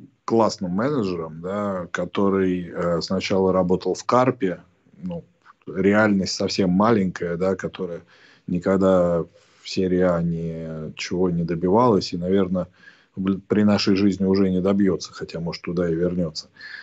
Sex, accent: male, native